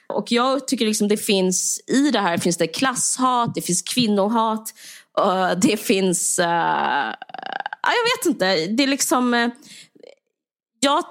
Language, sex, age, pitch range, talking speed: Swedish, female, 20-39, 190-265 Hz, 135 wpm